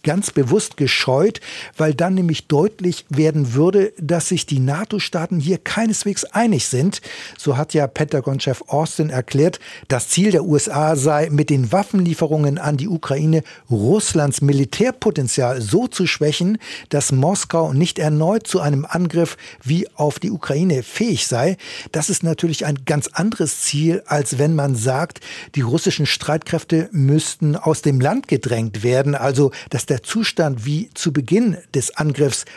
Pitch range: 145-180 Hz